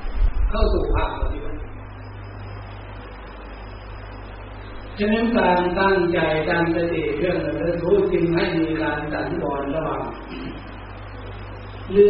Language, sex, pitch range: Thai, male, 100-160 Hz